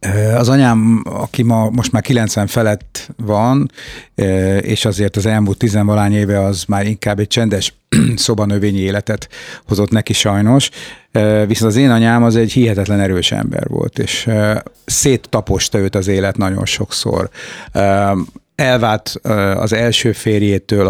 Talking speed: 130 wpm